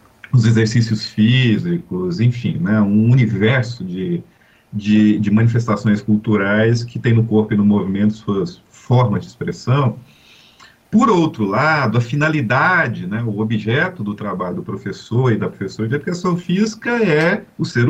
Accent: Brazilian